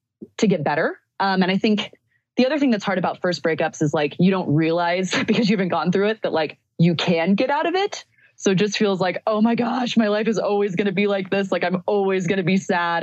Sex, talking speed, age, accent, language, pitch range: female, 265 wpm, 20-39, American, English, 155-195 Hz